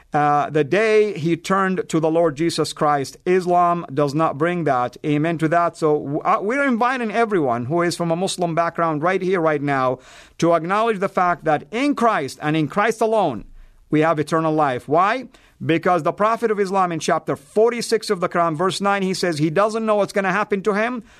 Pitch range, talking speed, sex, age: 160-210 Hz, 205 wpm, male, 50-69